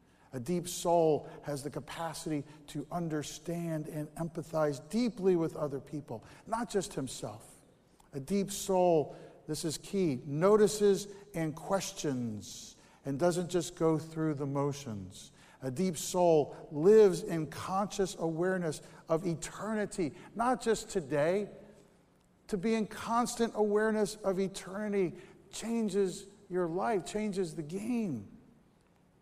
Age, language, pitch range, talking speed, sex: 50-69, English, 140-180 Hz, 120 wpm, male